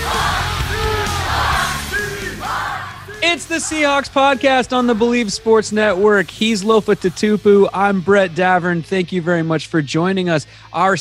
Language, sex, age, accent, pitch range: English, male, 30-49, American, 130-185 Hz